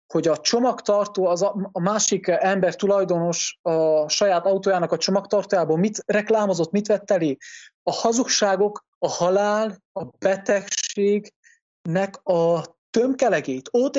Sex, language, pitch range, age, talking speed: male, English, 155-205 Hz, 20-39, 120 wpm